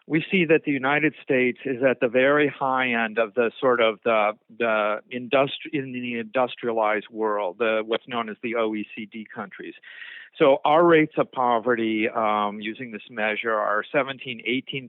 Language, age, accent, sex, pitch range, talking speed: English, 50-69, American, male, 110-130 Hz, 170 wpm